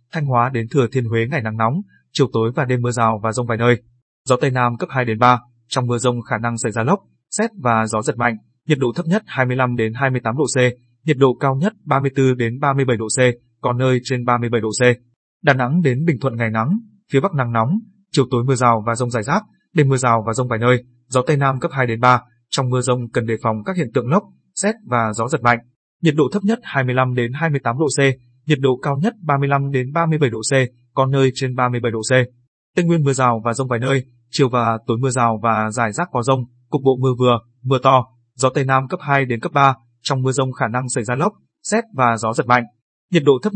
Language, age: Vietnamese, 20-39